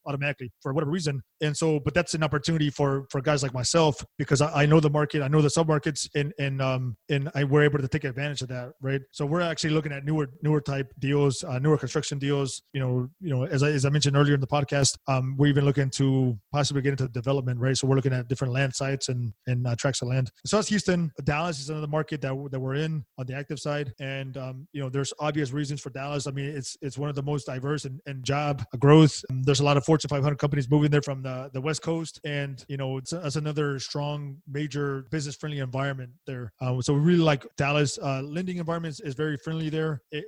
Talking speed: 250 wpm